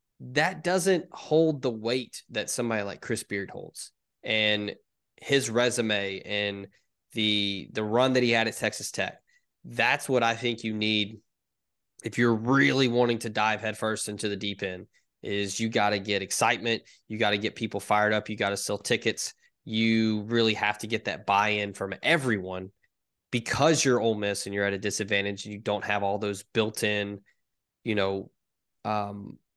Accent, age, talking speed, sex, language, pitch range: American, 20-39, 180 wpm, male, English, 105-125 Hz